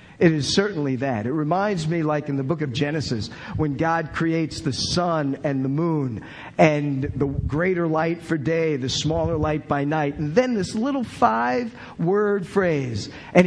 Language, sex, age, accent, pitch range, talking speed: English, male, 50-69, American, 150-200 Hz, 175 wpm